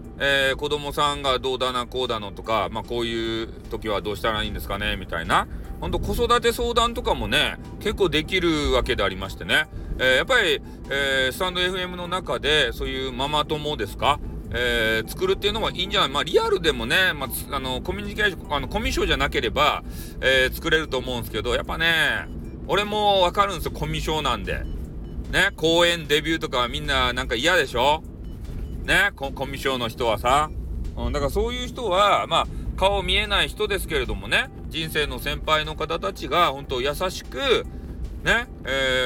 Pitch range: 120-170 Hz